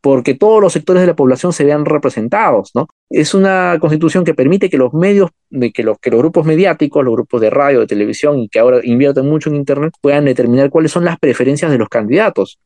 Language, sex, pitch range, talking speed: Spanish, male, 130-180 Hz, 225 wpm